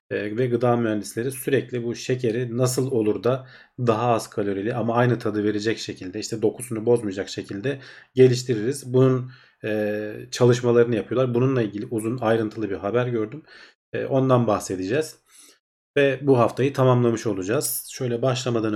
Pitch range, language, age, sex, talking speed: 105-125 Hz, Turkish, 40-59, male, 130 wpm